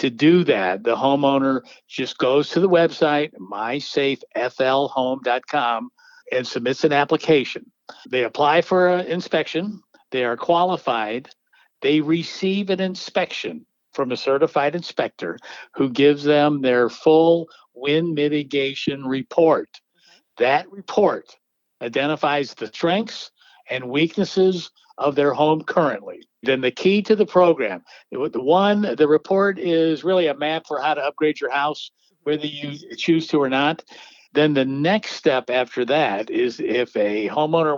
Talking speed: 135 wpm